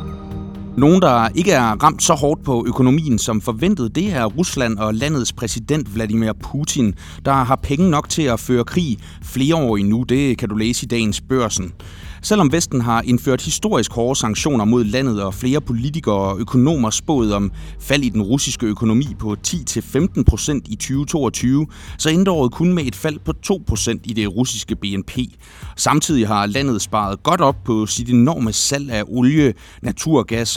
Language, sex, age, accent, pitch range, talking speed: Danish, male, 30-49, native, 105-140 Hz, 175 wpm